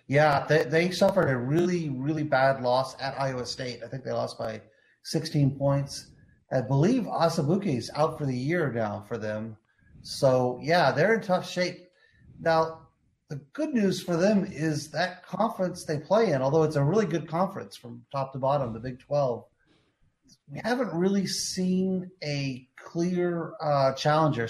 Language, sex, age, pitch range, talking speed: English, male, 30-49, 130-160 Hz, 170 wpm